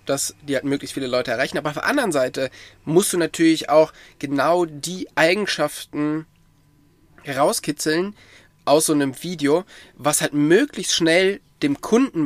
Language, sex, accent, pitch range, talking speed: German, male, German, 140-170 Hz, 145 wpm